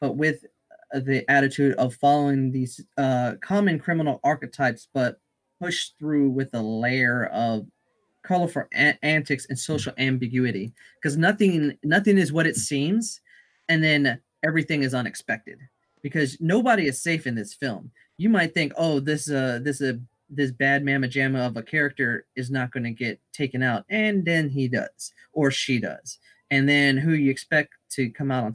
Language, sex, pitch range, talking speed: English, male, 125-160 Hz, 170 wpm